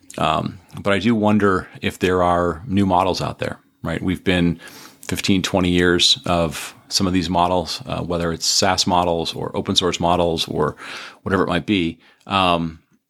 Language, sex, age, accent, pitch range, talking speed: English, male, 30-49, American, 85-100 Hz, 175 wpm